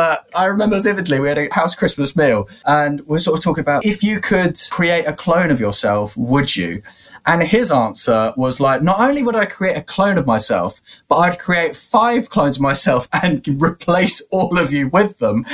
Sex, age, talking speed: male, 20-39, 210 wpm